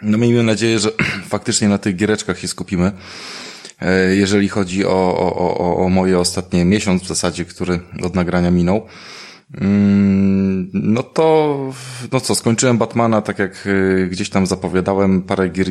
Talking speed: 145 wpm